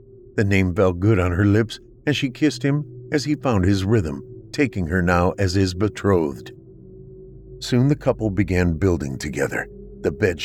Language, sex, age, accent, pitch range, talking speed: English, male, 50-69, American, 90-125 Hz, 170 wpm